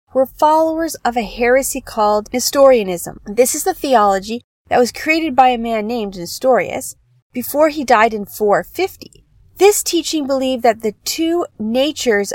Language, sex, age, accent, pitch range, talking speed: English, female, 30-49, American, 205-270 Hz, 150 wpm